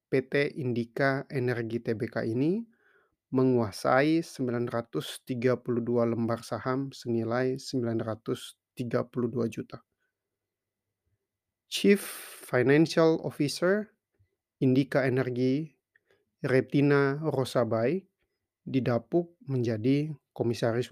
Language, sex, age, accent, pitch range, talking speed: Indonesian, male, 30-49, native, 115-145 Hz, 65 wpm